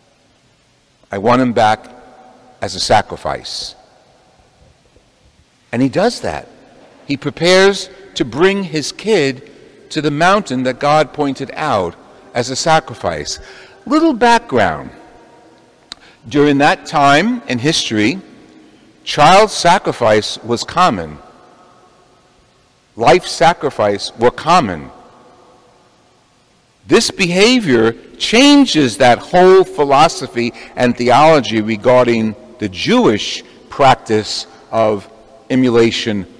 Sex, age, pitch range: male, 60-79, 115-180 Hz